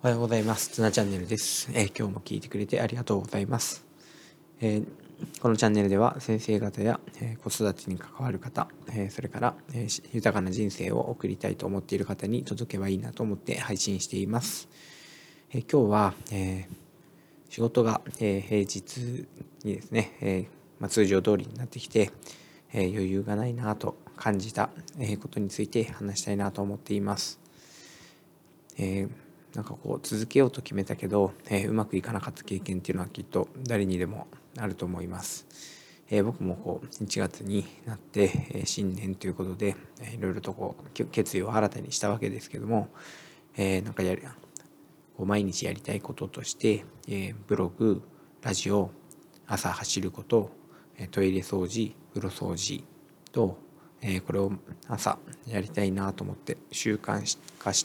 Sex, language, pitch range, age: male, Japanese, 95-120 Hz, 20-39